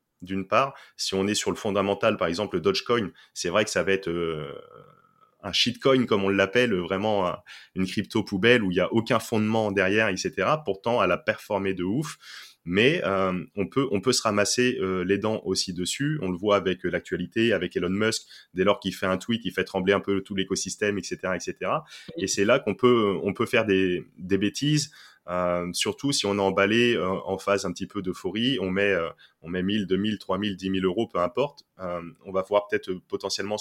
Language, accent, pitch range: French, French, 95-110 Hz